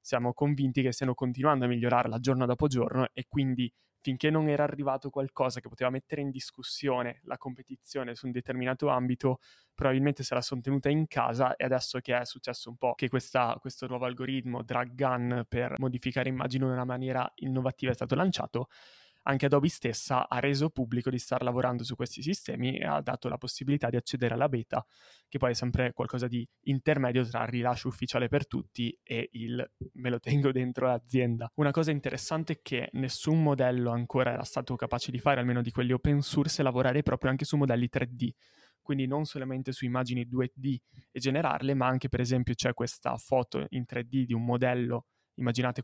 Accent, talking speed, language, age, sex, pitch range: native, 190 wpm, Italian, 20-39, male, 125-135 Hz